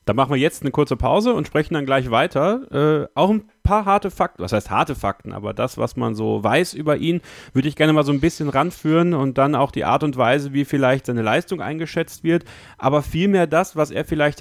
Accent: German